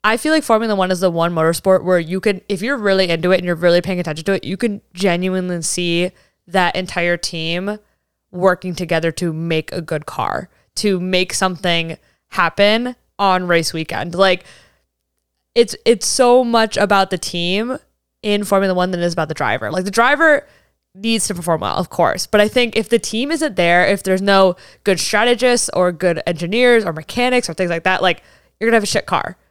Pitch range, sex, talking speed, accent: 175-230 Hz, female, 205 wpm, American